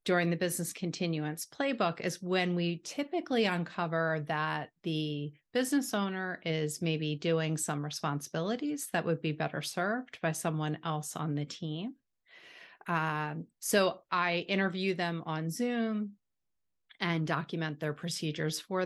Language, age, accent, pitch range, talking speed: English, 40-59, American, 155-185 Hz, 135 wpm